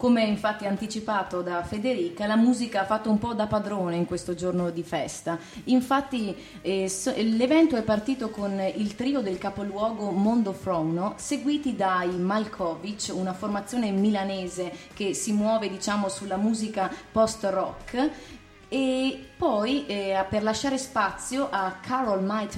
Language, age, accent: Italian, 30-49, native